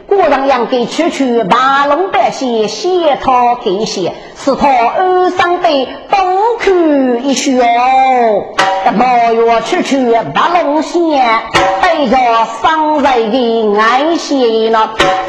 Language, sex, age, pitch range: Chinese, female, 40-59, 235-335 Hz